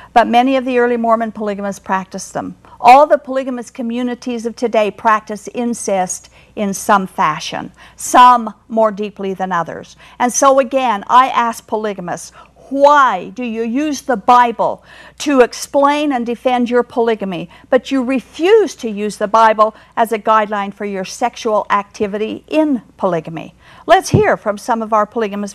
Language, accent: English, American